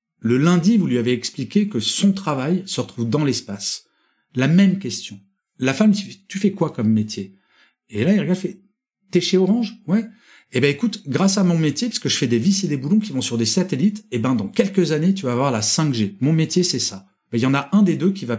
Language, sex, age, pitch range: French, male, 40-59, 115-180 Hz